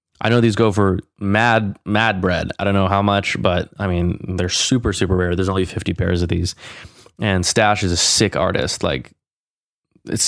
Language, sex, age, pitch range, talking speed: English, male, 20-39, 95-110 Hz, 200 wpm